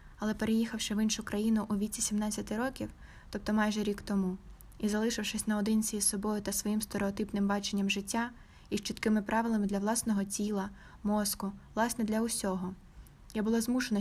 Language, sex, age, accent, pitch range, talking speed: Ukrainian, female, 20-39, native, 195-220 Hz, 160 wpm